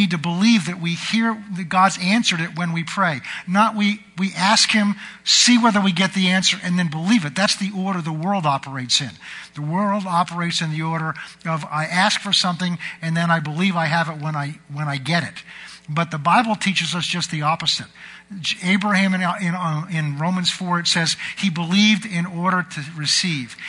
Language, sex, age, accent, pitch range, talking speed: English, male, 50-69, American, 160-195 Hz, 205 wpm